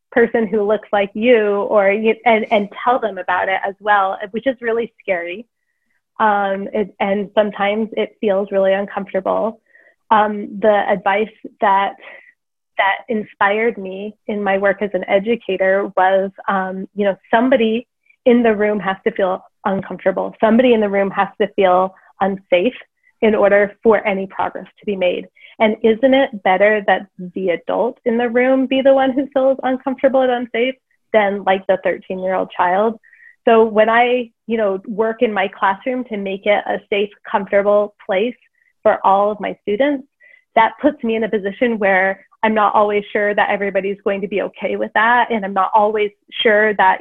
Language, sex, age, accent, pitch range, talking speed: English, female, 20-39, American, 195-235 Hz, 175 wpm